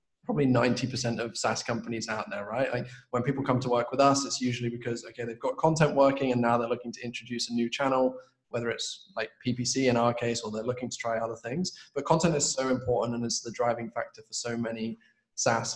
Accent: British